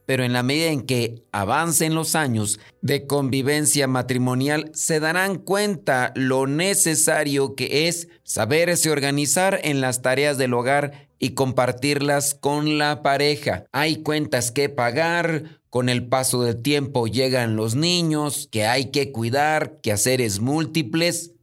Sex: male